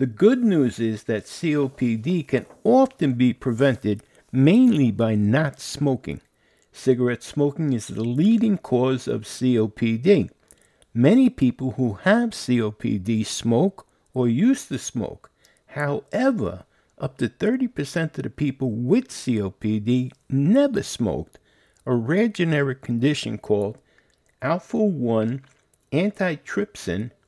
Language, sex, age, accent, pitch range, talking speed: English, male, 60-79, American, 115-165 Hz, 110 wpm